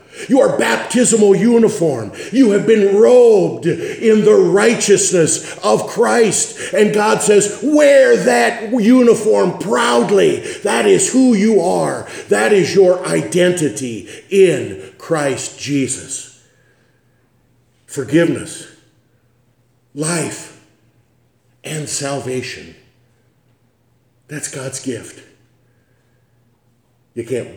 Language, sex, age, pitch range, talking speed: English, male, 50-69, 120-140 Hz, 90 wpm